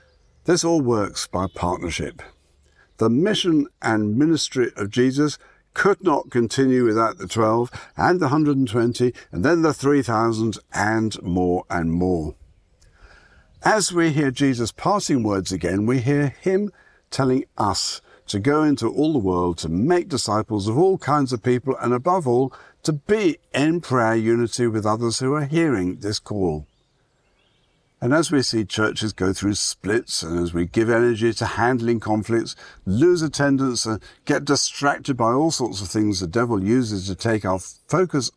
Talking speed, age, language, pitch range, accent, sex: 160 wpm, 60-79, English, 95-140 Hz, British, male